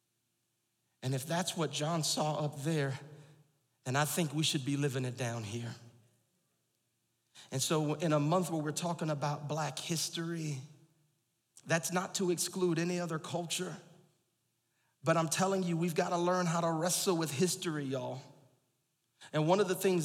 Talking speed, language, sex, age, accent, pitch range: 160 wpm, English, male, 40-59, American, 135-190 Hz